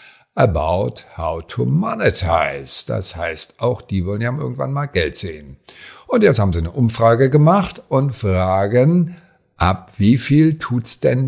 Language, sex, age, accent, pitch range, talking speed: German, male, 50-69, German, 100-135 Hz, 150 wpm